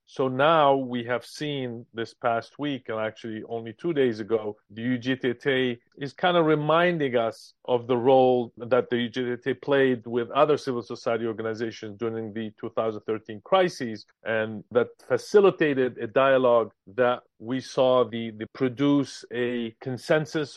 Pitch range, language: 115-140 Hz, English